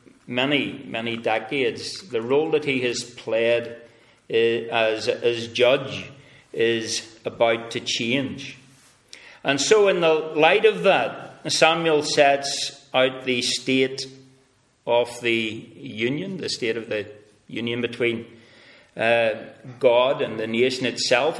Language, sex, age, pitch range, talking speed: English, male, 40-59, 120-150 Hz, 125 wpm